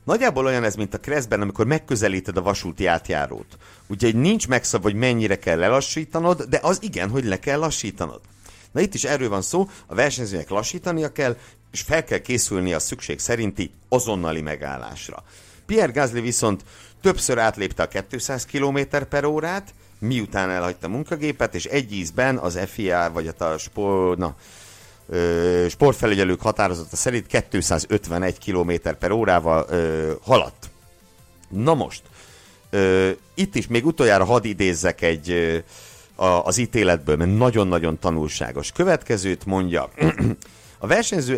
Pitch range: 90-130 Hz